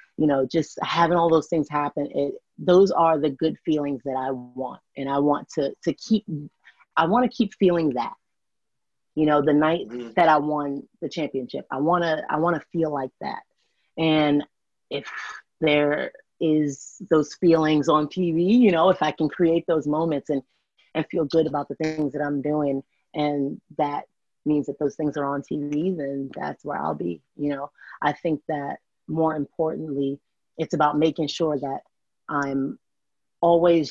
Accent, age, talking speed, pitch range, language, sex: American, 30-49, 175 wpm, 140-165 Hz, English, female